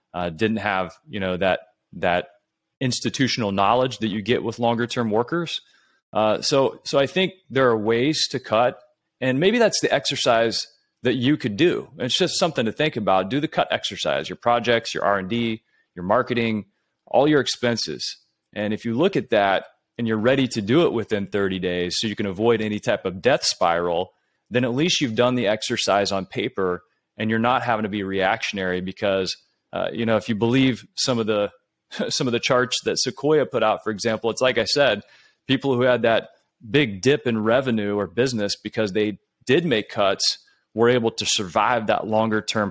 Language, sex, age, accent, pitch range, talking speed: English, male, 30-49, American, 100-125 Hz, 200 wpm